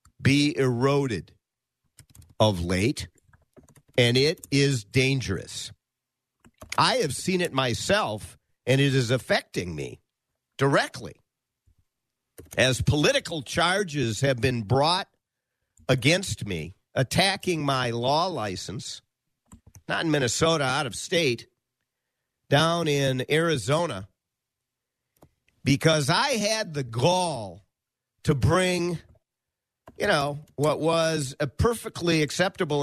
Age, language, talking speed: 50-69, English, 100 wpm